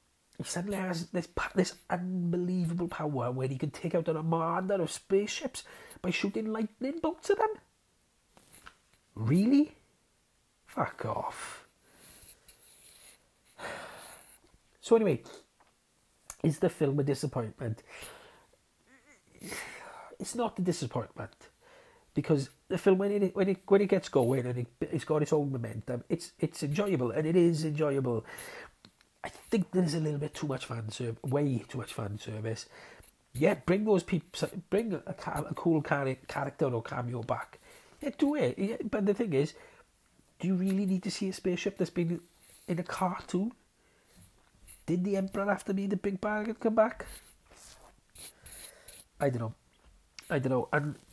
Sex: male